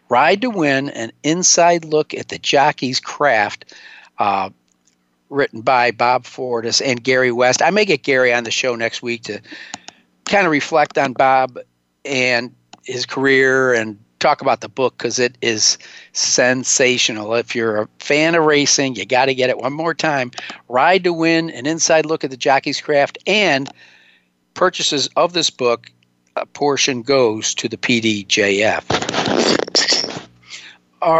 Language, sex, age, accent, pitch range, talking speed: English, male, 50-69, American, 125-150 Hz, 155 wpm